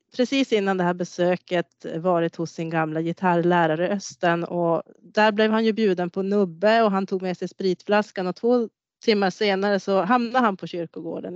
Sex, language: female, Swedish